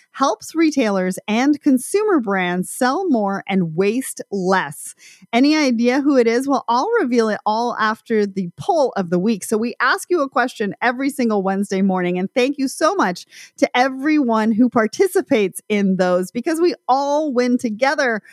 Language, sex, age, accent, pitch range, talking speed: English, female, 30-49, American, 195-280 Hz, 170 wpm